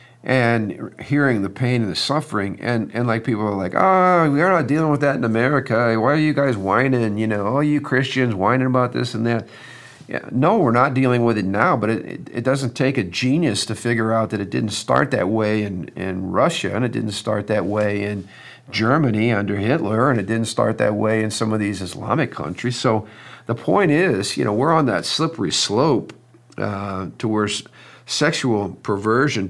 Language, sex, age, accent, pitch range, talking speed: English, male, 50-69, American, 100-125 Hz, 205 wpm